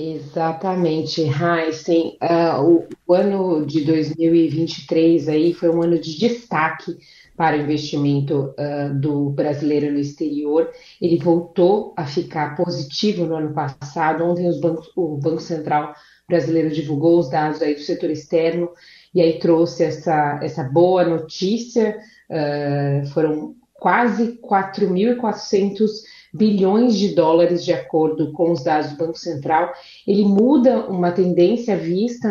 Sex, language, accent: female, Portuguese, Brazilian